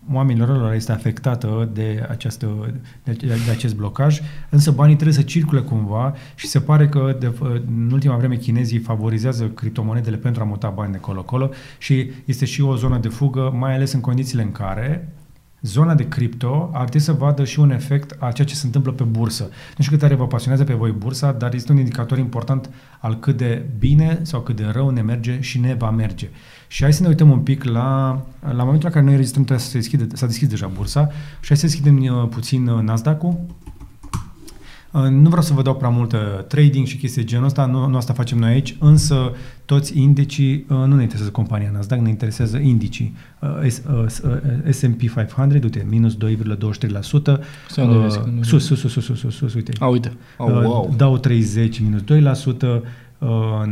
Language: Romanian